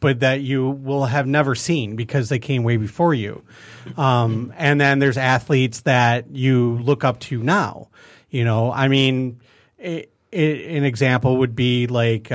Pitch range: 120-155 Hz